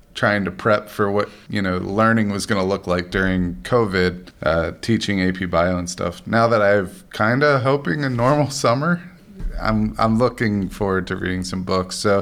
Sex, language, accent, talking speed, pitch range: male, English, American, 195 wpm, 95-115 Hz